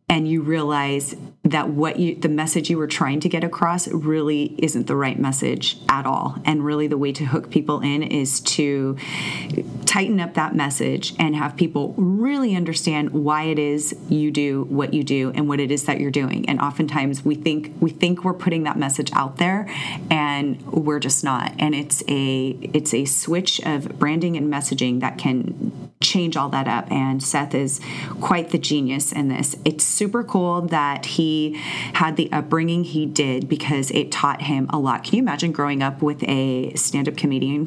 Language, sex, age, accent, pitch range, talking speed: English, female, 30-49, American, 140-165 Hz, 190 wpm